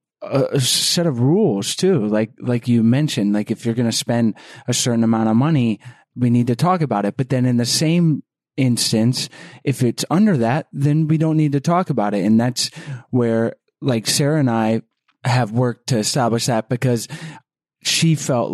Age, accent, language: 30-49, American, English